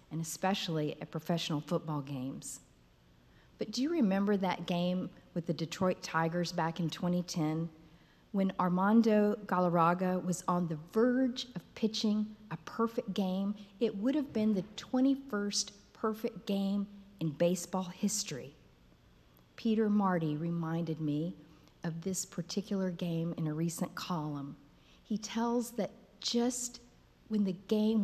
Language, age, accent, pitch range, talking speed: English, 50-69, American, 160-205 Hz, 130 wpm